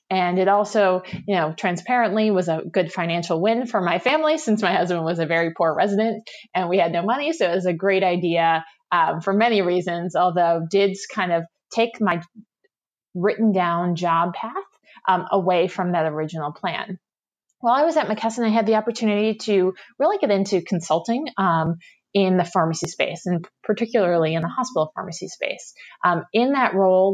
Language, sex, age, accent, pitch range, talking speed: English, female, 20-39, American, 165-205 Hz, 185 wpm